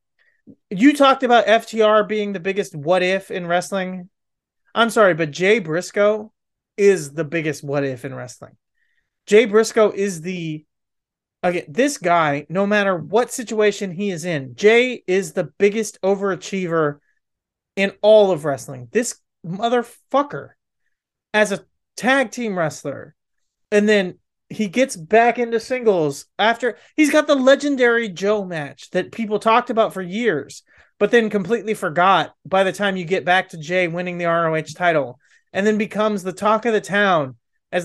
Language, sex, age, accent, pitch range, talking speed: English, male, 30-49, American, 175-220 Hz, 150 wpm